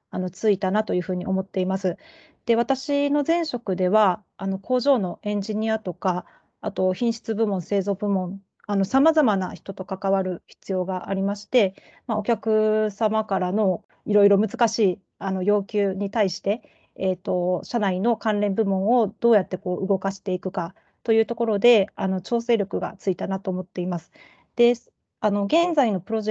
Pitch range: 185-225 Hz